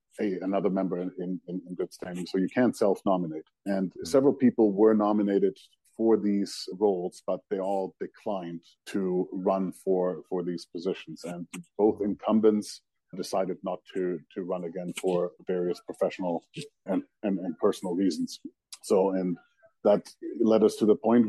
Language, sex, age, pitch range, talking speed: English, male, 40-59, 95-110 Hz, 150 wpm